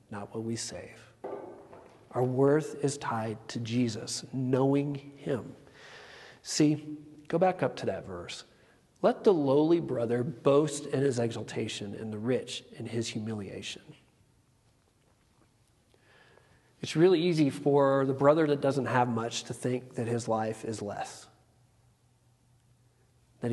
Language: English